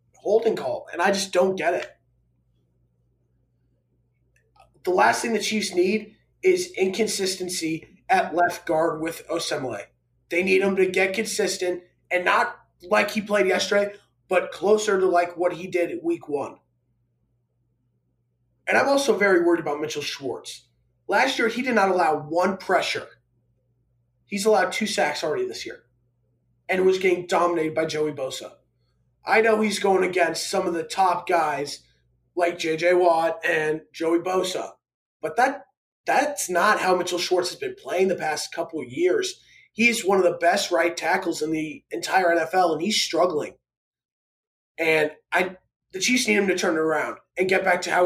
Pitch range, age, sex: 150-190 Hz, 20-39, male